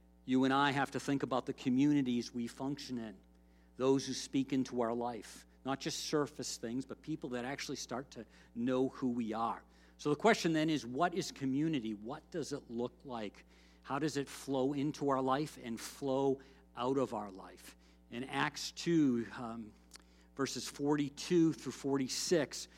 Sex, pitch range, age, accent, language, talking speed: male, 125-155 Hz, 50-69, American, English, 175 wpm